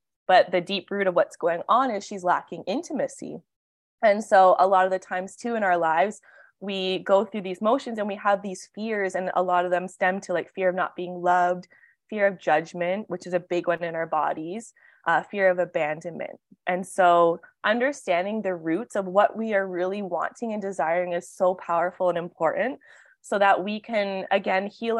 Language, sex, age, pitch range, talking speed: English, female, 20-39, 175-210 Hz, 205 wpm